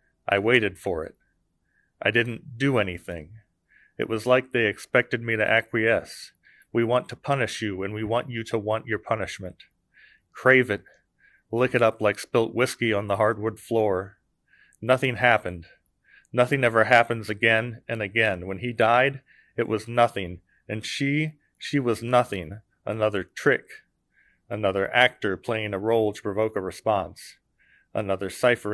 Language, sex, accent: English, male, American